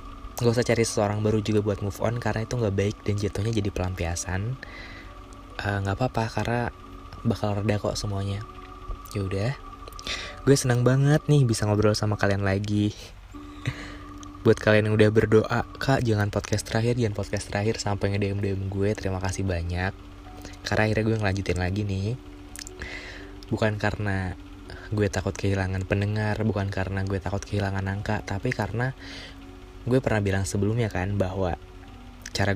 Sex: male